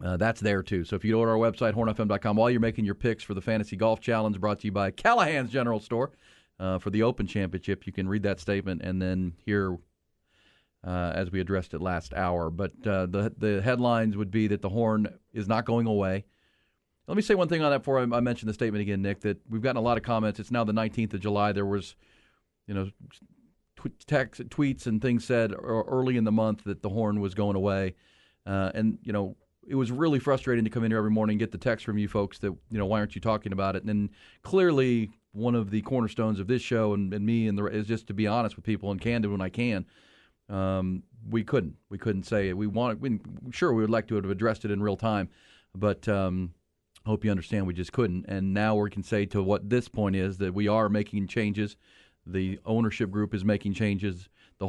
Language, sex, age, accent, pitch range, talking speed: English, male, 40-59, American, 100-115 Hz, 240 wpm